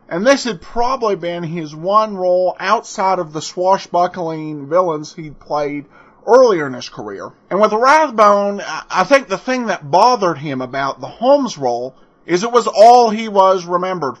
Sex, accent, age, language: male, American, 40-59, English